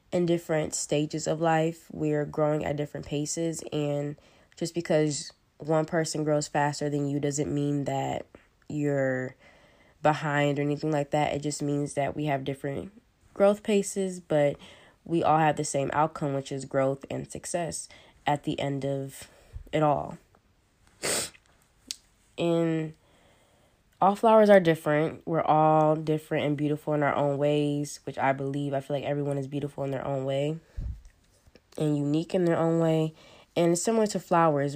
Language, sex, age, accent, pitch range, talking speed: English, female, 20-39, American, 140-160 Hz, 160 wpm